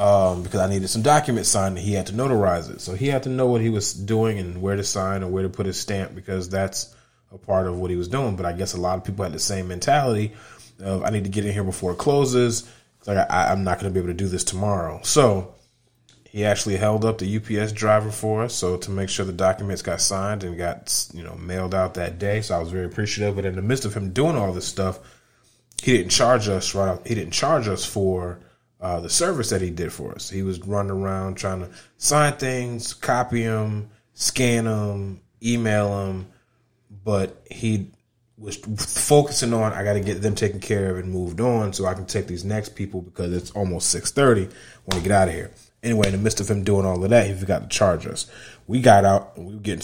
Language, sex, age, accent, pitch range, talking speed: English, male, 30-49, American, 95-115 Hz, 245 wpm